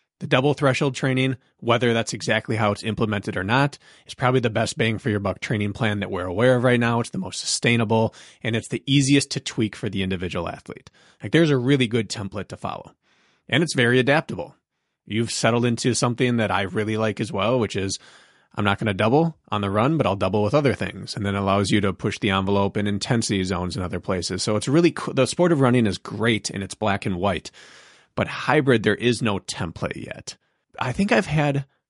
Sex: male